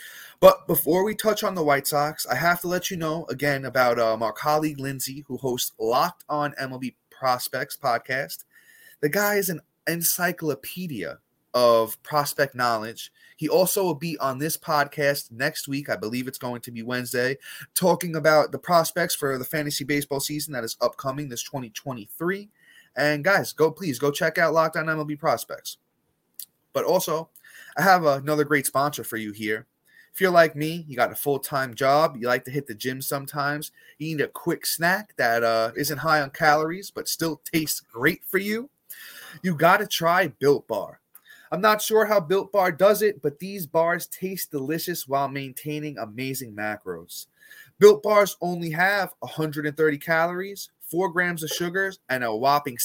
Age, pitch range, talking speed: 30-49, 135-175 Hz, 175 wpm